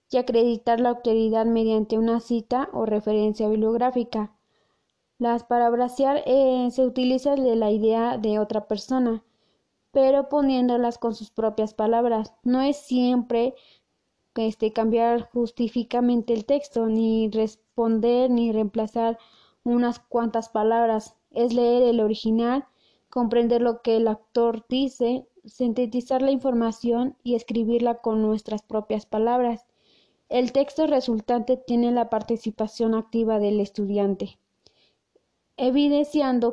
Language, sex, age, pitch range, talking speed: Spanish, female, 20-39, 220-250 Hz, 115 wpm